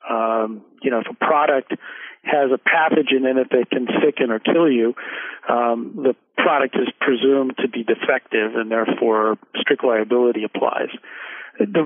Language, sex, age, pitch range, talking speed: English, male, 40-59, 120-140 Hz, 155 wpm